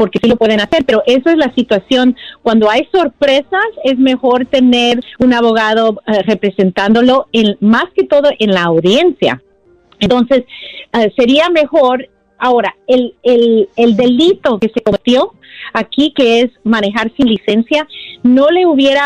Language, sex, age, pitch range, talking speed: Spanish, female, 40-59, 195-255 Hz, 150 wpm